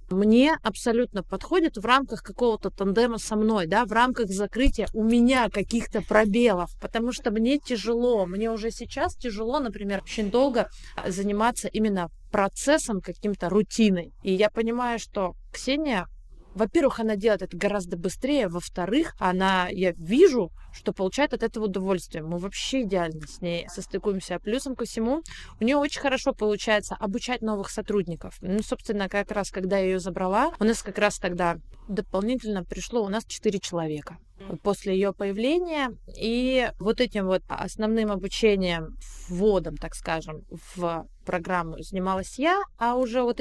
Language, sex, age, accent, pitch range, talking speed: Russian, female, 20-39, native, 190-235 Hz, 150 wpm